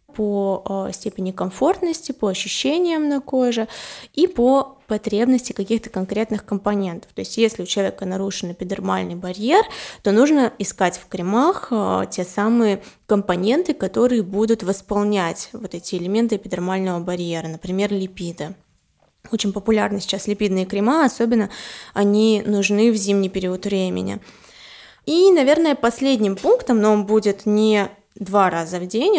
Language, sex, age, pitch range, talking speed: Russian, female, 20-39, 195-230 Hz, 130 wpm